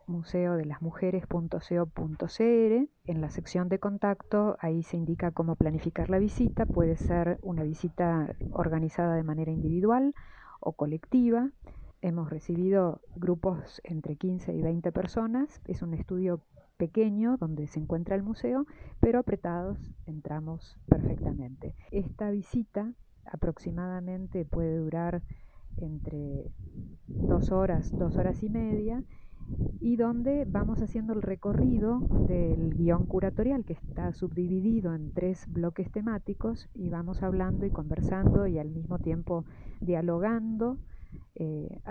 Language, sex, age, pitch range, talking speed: Spanish, female, 40-59, 165-205 Hz, 125 wpm